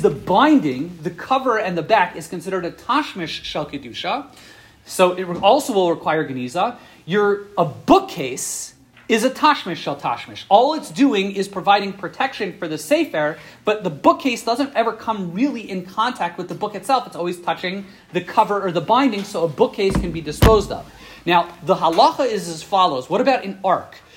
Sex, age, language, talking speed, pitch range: male, 30-49, English, 185 wpm, 170-230 Hz